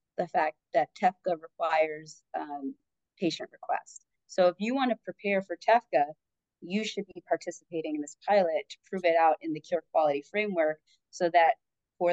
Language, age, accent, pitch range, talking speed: English, 30-49, American, 155-200 Hz, 175 wpm